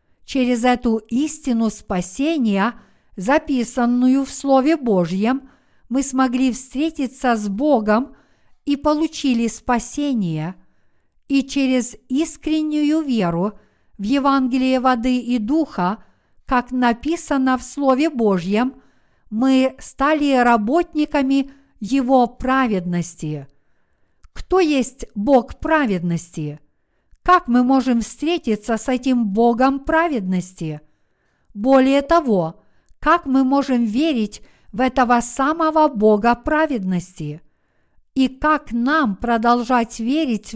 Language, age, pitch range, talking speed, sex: Russian, 50-69, 220-280 Hz, 95 wpm, female